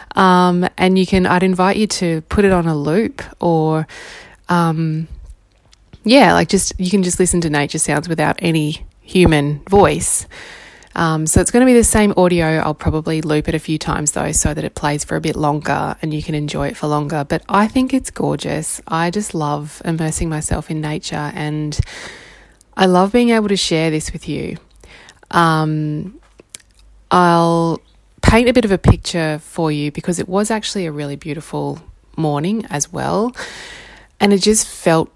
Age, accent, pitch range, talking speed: 20-39, Australian, 155-185 Hz, 185 wpm